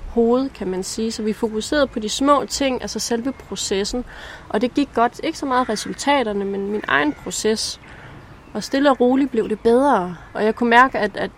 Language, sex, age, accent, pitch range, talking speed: Danish, female, 20-39, native, 190-230 Hz, 205 wpm